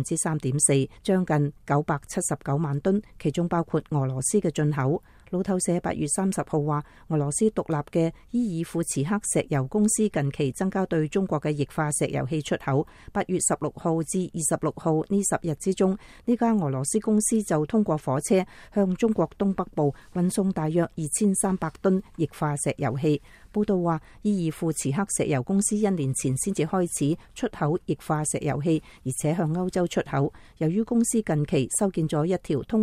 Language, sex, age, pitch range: English, female, 40-59, 150-190 Hz